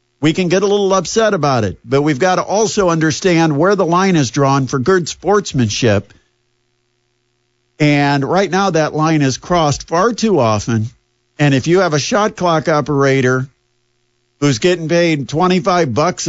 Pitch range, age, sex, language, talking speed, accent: 120-170 Hz, 50-69, male, English, 165 wpm, American